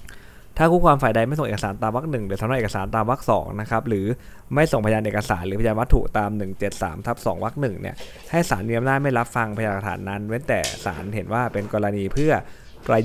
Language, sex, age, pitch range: Thai, male, 20-39, 100-120 Hz